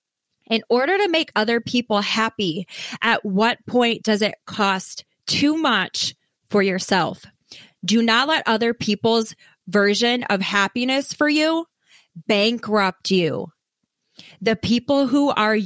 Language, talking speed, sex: English, 125 wpm, female